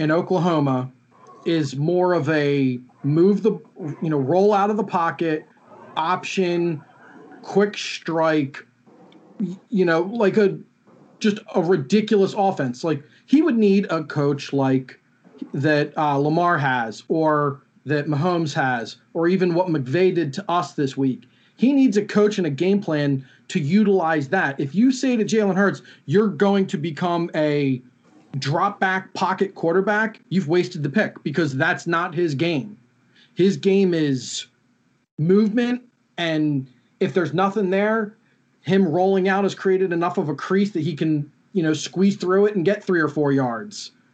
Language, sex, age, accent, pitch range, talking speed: English, male, 40-59, American, 150-200 Hz, 160 wpm